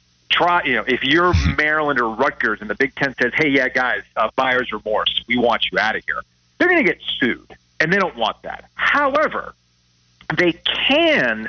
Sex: male